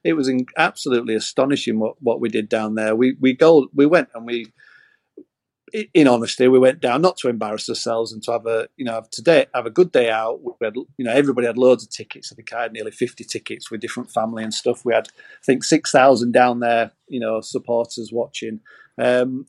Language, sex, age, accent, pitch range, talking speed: English, male, 40-59, British, 120-140 Hz, 230 wpm